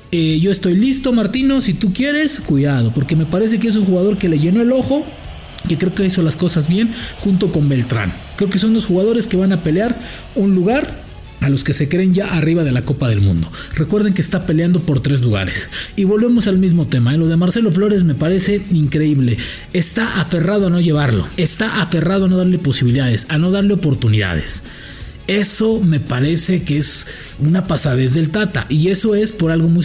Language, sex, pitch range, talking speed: English, male, 140-190 Hz, 210 wpm